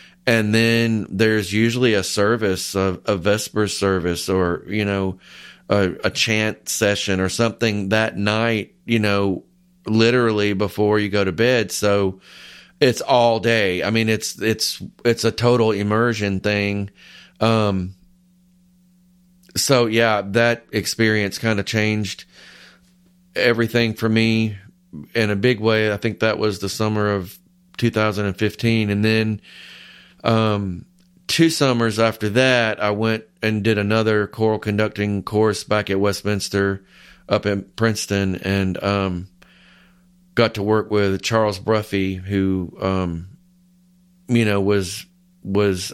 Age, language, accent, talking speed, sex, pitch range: 30-49, English, American, 130 wpm, male, 95-115 Hz